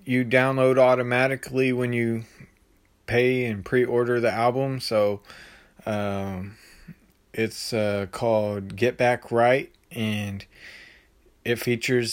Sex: male